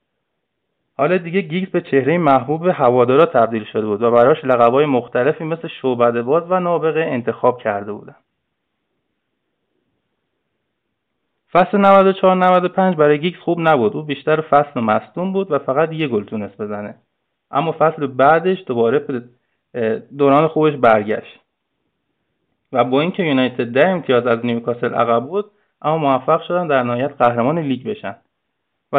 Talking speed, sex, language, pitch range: 140 wpm, male, Persian, 125-175 Hz